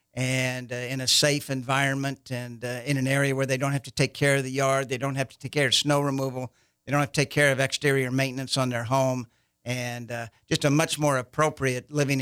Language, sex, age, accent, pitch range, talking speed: English, male, 60-79, American, 125-140 Hz, 245 wpm